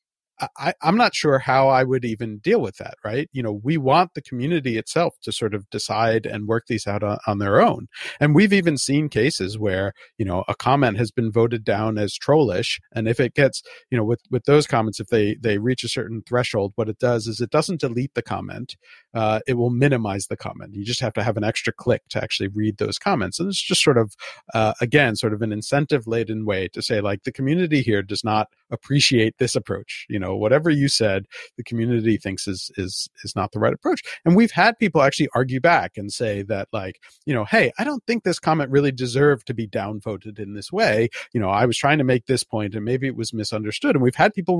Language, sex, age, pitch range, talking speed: English, male, 50-69, 110-145 Hz, 235 wpm